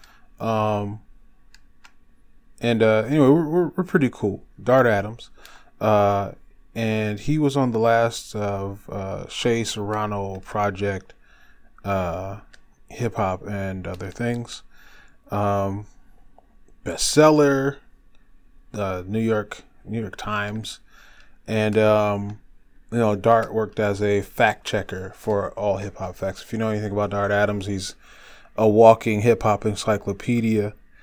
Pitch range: 100-115 Hz